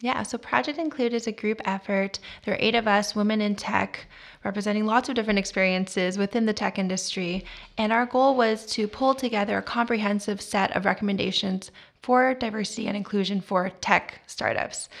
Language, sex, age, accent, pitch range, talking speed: English, female, 20-39, American, 190-220 Hz, 175 wpm